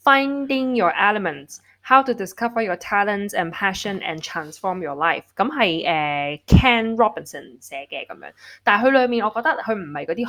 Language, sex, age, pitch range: Chinese, female, 10-29, 170-260 Hz